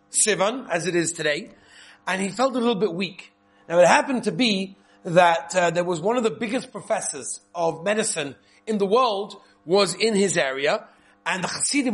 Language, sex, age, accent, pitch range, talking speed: English, male, 40-59, British, 170-230 Hz, 190 wpm